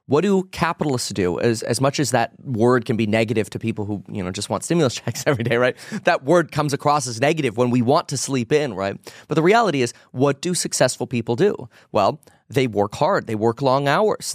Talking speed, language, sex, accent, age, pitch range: 230 wpm, English, male, American, 20-39, 120-170 Hz